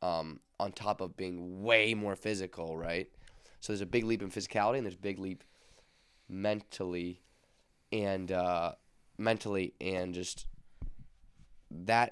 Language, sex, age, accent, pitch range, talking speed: English, male, 20-39, American, 90-110 Hz, 140 wpm